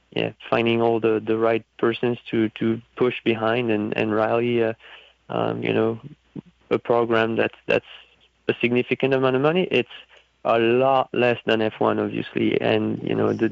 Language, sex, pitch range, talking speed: English, male, 110-120 Hz, 170 wpm